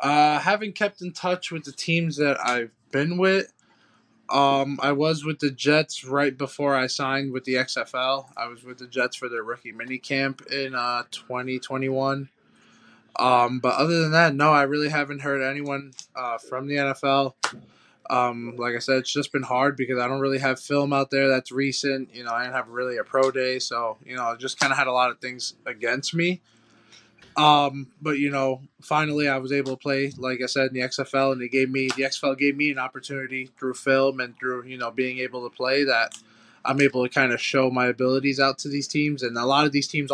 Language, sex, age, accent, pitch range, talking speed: English, male, 20-39, American, 125-140 Hz, 220 wpm